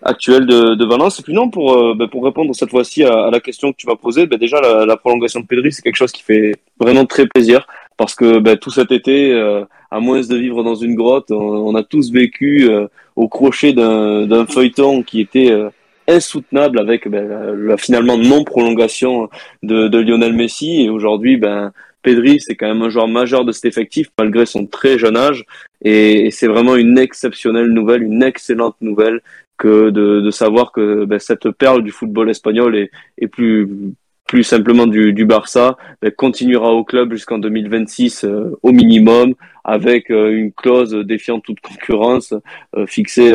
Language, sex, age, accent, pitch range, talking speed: French, male, 20-39, French, 110-125 Hz, 195 wpm